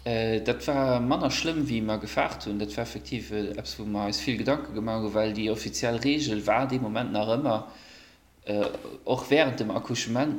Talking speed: 175 wpm